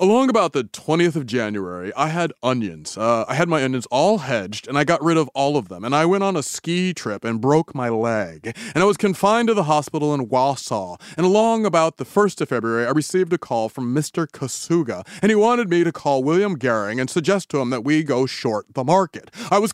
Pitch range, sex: 130-185 Hz, male